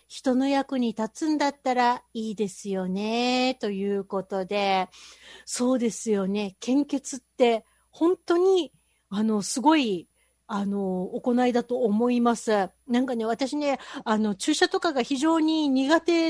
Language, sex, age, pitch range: Japanese, female, 40-59, 220-300 Hz